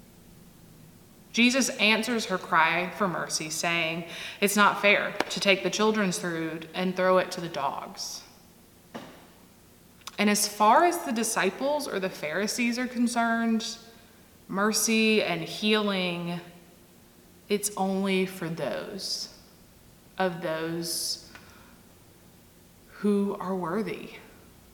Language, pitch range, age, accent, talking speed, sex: English, 180-220 Hz, 20-39, American, 105 wpm, female